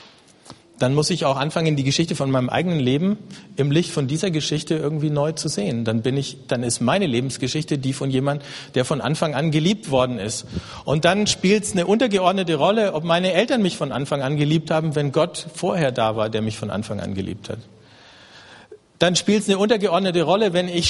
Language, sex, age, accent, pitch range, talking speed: German, male, 50-69, German, 135-170 Hz, 210 wpm